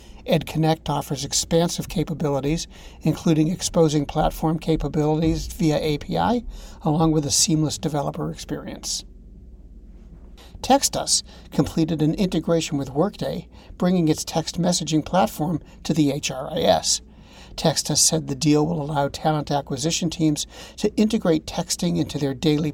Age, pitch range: 60-79, 150-175 Hz